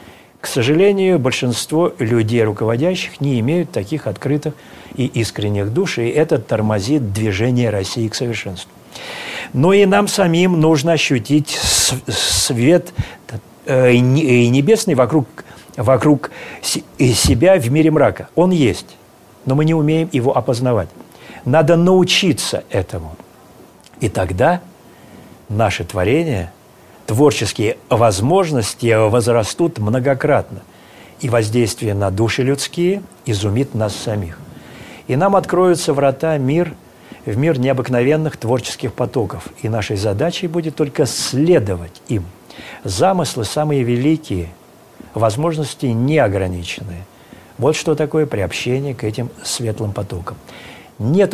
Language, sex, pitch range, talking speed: Russian, male, 110-155 Hz, 110 wpm